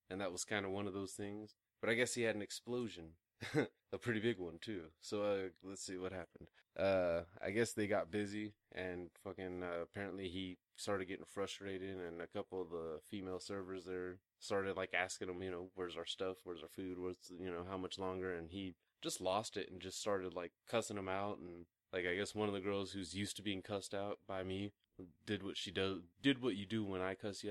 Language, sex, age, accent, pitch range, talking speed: English, male, 20-39, American, 95-105 Hz, 225 wpm